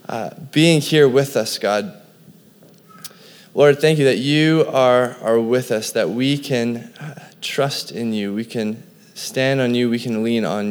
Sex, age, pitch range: male, 20-39, 135-190 Hz